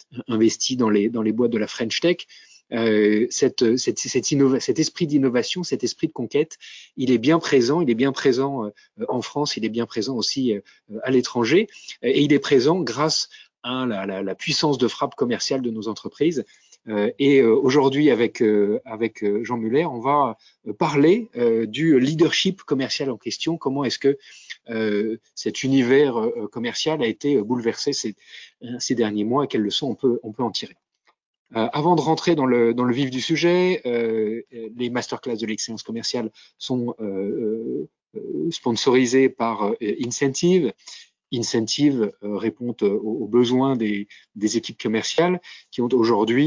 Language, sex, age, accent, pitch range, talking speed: French, male, 30-49, French, 110-140 Hz, 165 wpm